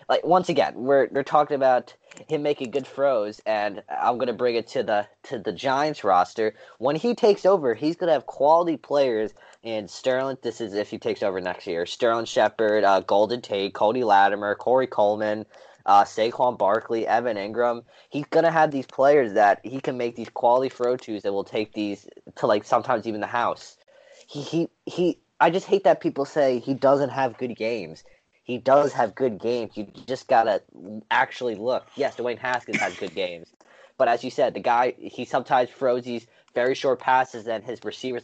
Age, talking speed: 20-39, 195 wpm